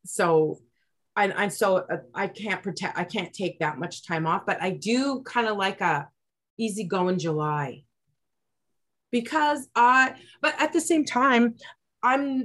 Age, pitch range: 30-49, 165-225 Hz